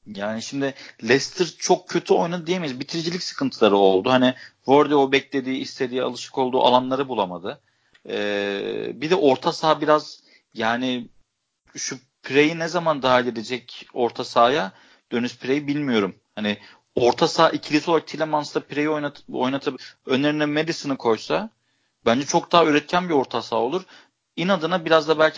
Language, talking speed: Turkish, 145 wpm